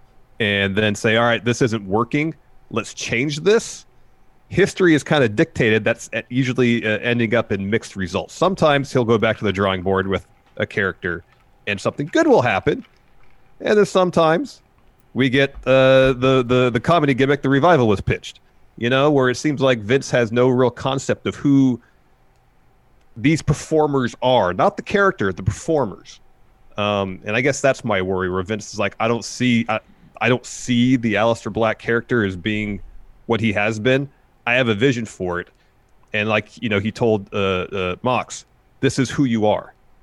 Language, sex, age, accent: English, male, 30-49, American